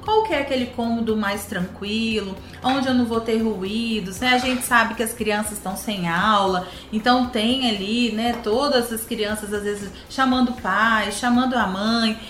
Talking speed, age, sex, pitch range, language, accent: 185 wpm, 30-49, female, 215-280 Hz, Portuguese, Brazilian